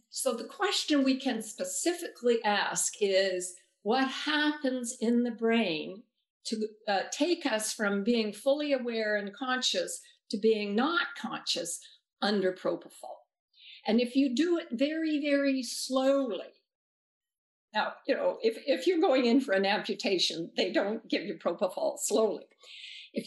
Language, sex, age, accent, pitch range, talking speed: English, female, 60-79, American, 210-275 Hz, 140 wpm